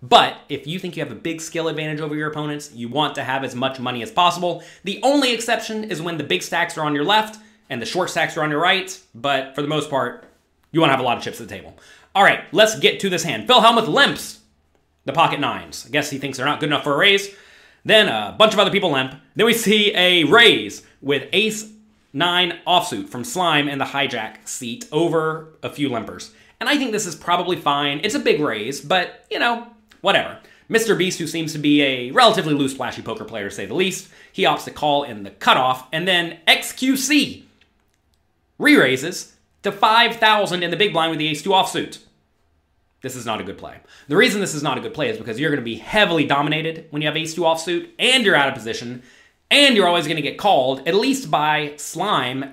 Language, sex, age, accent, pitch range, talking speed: English, male, 30-49, American, 135-190 Hz, 235 wpm